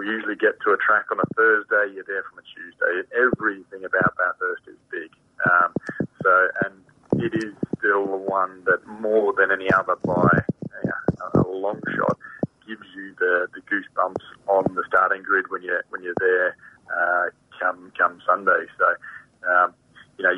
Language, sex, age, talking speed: English, male, 30-49, 175 wpm